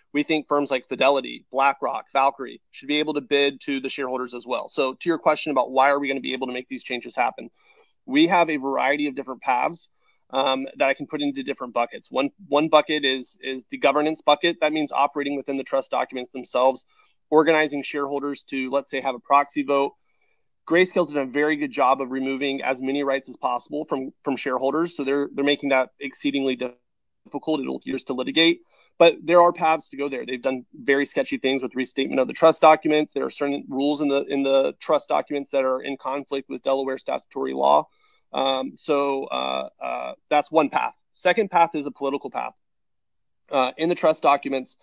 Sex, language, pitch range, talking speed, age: male, English, 130-150 Hz, 205 wpm, 30-49